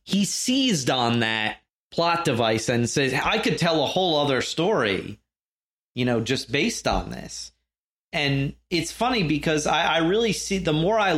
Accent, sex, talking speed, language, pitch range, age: American, male, 170 wpm, English, 115-155 Hz, 30-49